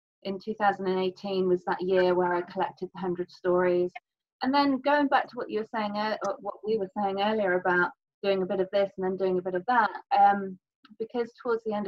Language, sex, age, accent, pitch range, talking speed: English, female, 30-49, British, 185-225 Hz, 215 wpm